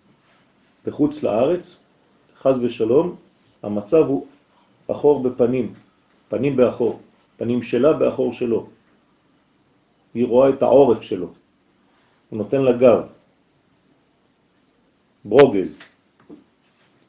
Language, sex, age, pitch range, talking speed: French, male, 40-59, 110-135 Hz, 85 wpm